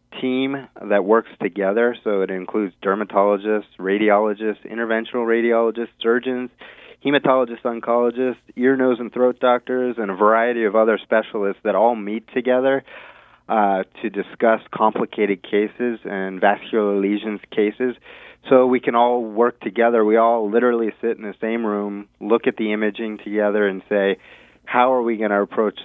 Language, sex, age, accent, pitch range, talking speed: English, male, 20-39, American, 100-115 Hz, 150 wpm